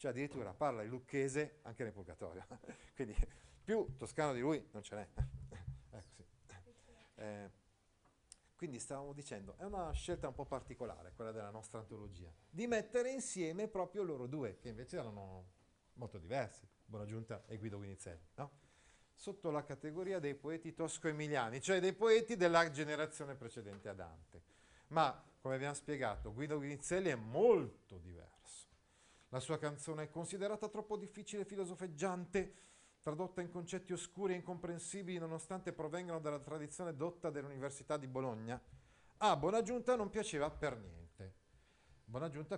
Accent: native